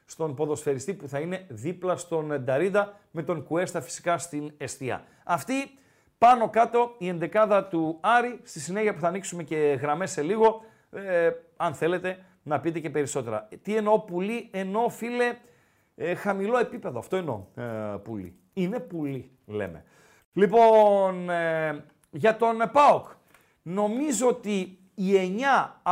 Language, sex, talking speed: Greek, male, 140 wpm